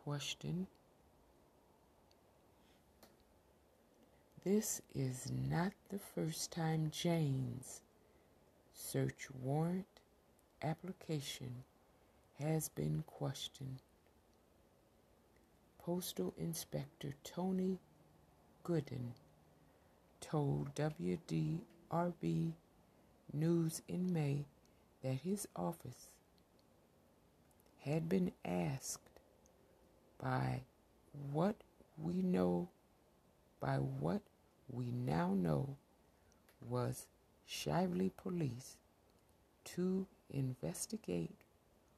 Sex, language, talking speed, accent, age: female, English, 60 wpm, American, 60-79